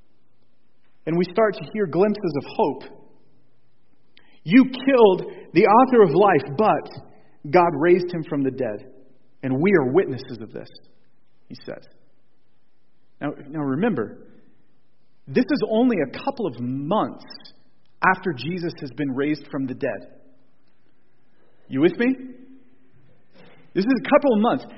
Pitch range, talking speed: 155-255 Hz, 135 wpm